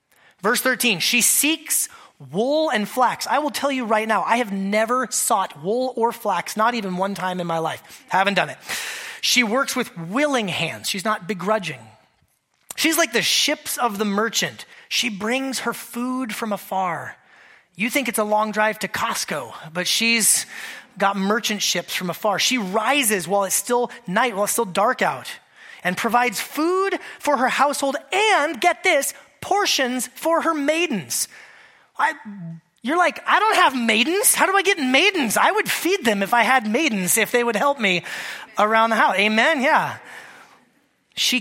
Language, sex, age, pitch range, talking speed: English, male, 30-49, 205-285 Hz, 175 wpm